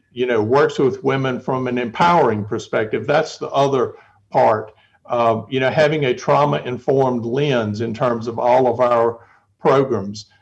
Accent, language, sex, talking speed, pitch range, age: American, English, male, 160 wpm, 120-145 Hz, 60-79